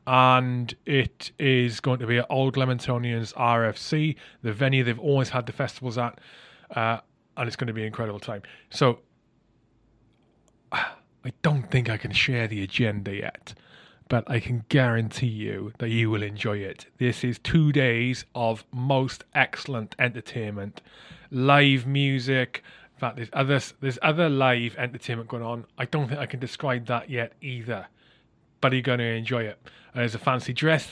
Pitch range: 115-140 Hz